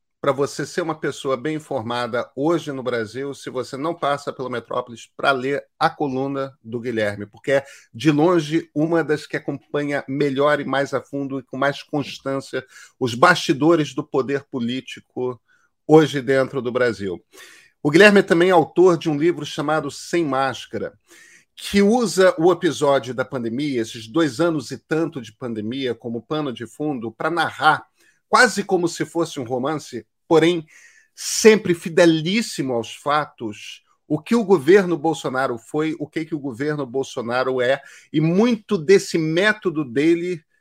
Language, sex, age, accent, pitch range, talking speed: Portuguese, male, 40-59, Brazilian, 135-175 Hz, 160 wpm